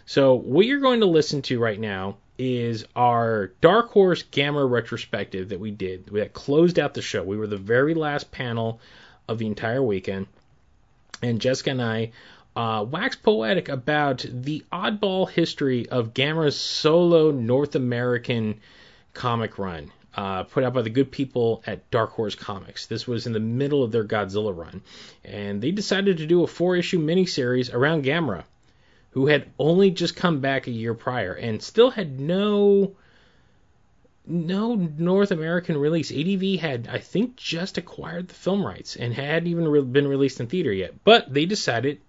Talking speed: 170 wpm